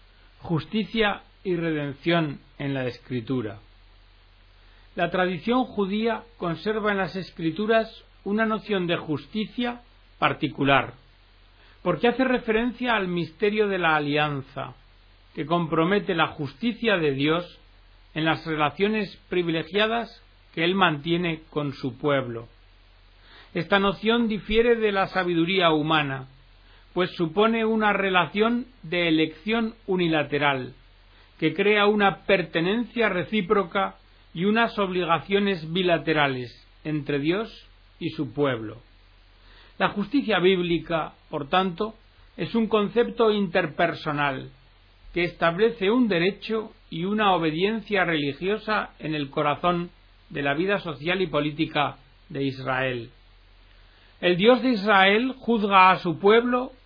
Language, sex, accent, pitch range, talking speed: Spanish, male, Spanish, 135-205 Hz, 110 wpm